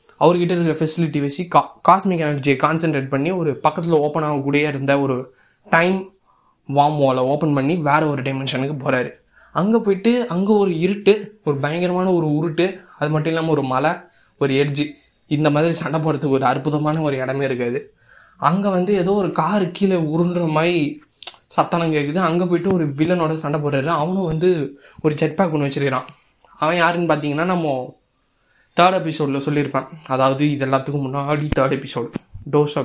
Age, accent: 20-39, native